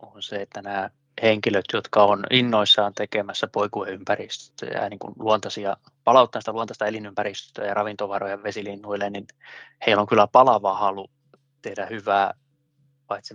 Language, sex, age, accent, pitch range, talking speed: Finnish, male, 20-39, native, 100-130 Hz, 120 wpm